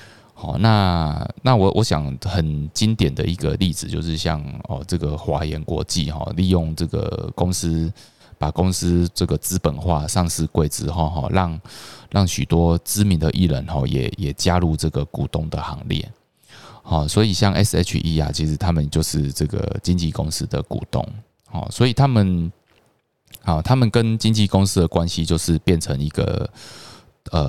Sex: male